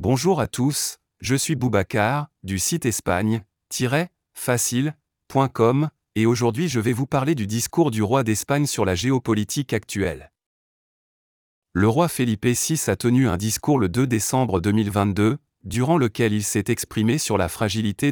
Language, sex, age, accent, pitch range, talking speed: French, male, 30-49, French, 100-135 Hz, 145 wpm